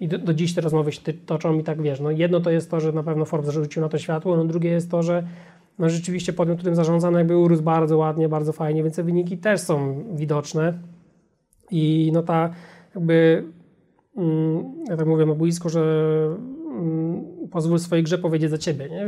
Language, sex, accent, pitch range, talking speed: Polish, male, native, 160-175 Hz, 210 wpm